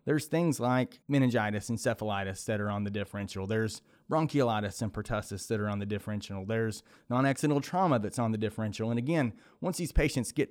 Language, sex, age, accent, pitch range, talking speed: English, male, 30-49, American, 110-140 Hz, 185 wpm